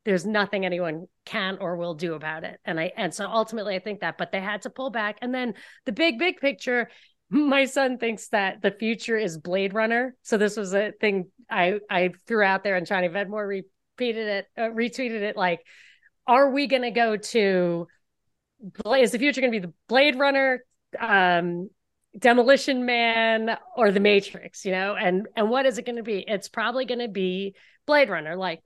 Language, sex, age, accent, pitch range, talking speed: English, female, 30-49, American, 190-230 Hz, 200 wpm